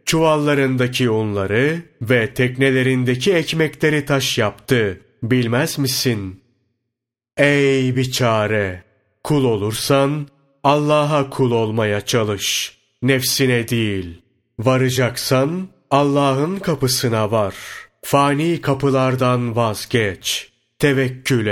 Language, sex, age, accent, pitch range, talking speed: Turkish, male, 30-49, native, 115-140 Hz, 75 wpm